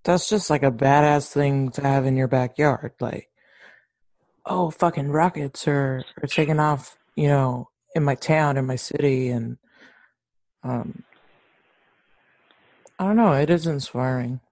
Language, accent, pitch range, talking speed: English, American, 130-145 Hz, 145 wpm